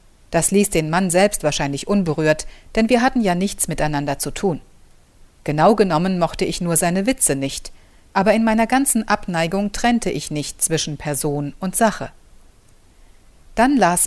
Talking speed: 160 wpm